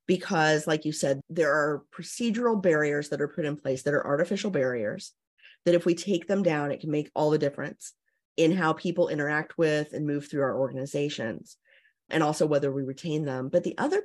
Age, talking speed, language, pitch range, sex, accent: 30-49, 205 wpm, English, 150-205 Hz, female, American